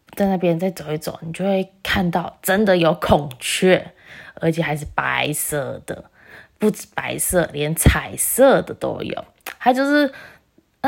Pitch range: 160-225 Hz